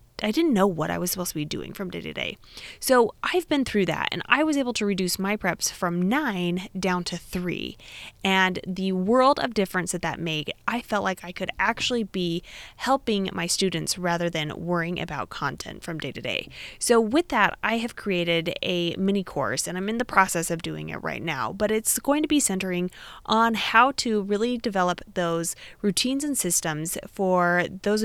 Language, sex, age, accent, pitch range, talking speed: English, female, 20-39, American, 175-235 Hz, 205 wpm